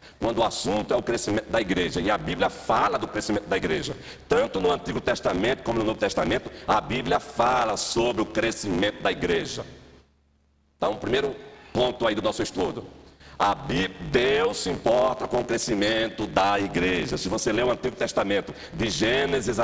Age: 60-79